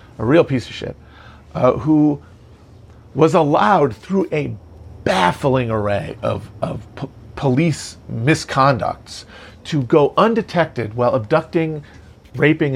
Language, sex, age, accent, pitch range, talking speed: English, male, 40-59, American, 110-160 Hz, 110 wpm